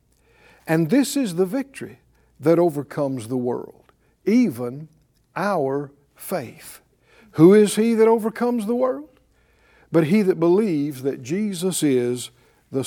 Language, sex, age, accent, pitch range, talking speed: English, male, 60-79, American, 140-195 Hz, 125 wpm